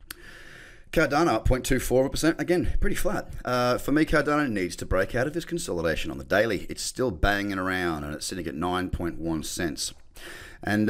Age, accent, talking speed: 30-49, Australian, 165 wpm